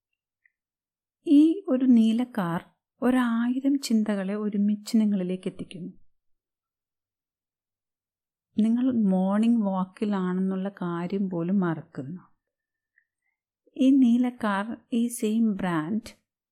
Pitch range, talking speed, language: 170-225 Hz, 70 wpm, Malayalam